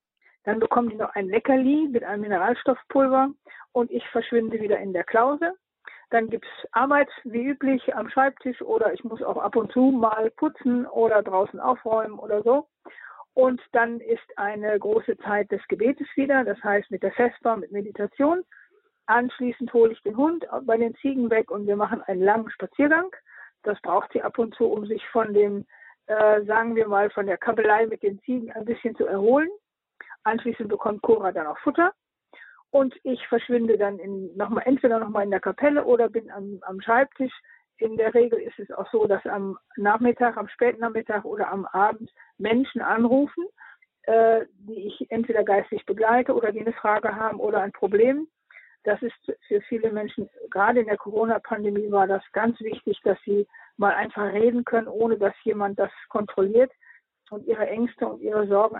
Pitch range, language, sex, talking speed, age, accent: 205-255 Hz, German, female, 180 wpm, 50-69, German